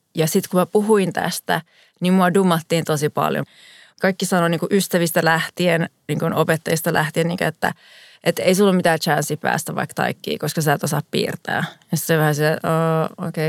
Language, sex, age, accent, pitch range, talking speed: Finnish, female, 30-49, native, 160-185 Hz, 185 wpm